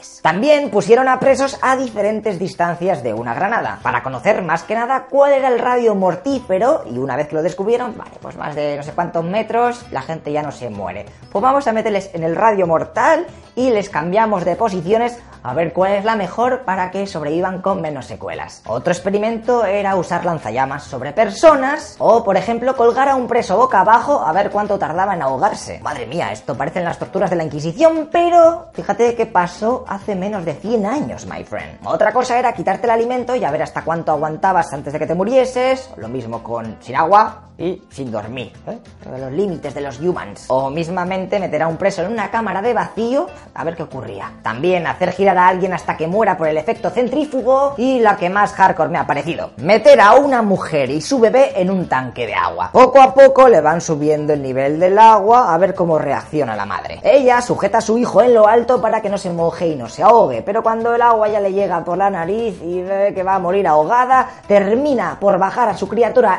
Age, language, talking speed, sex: 20-39, Spanish, 215 wpm, female